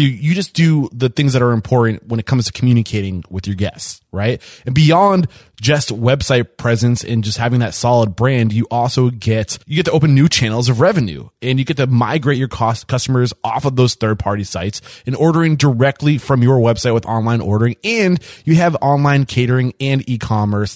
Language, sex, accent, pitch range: English, male, American, 110-135 Hz